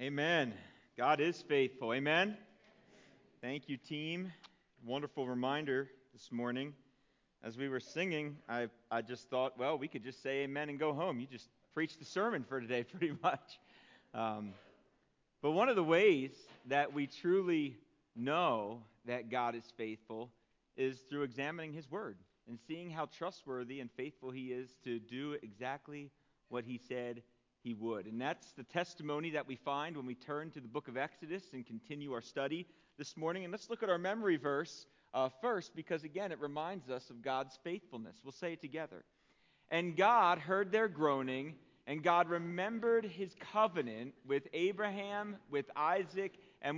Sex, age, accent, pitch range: male, 40-59, American, 125-165 Hz